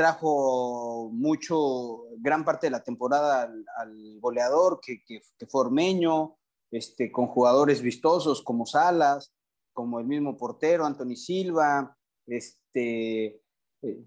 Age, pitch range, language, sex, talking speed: 30-49, 115-150 Hz, English, male, 120 wpm